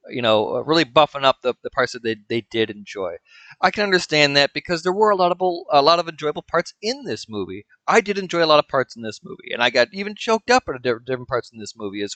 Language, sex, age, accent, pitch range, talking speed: English, male, 30-49, American, 130-180 Hz, 270 wpm